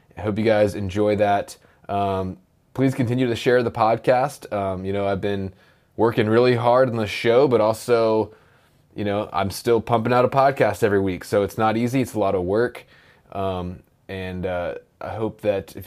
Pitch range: 100-120 Hz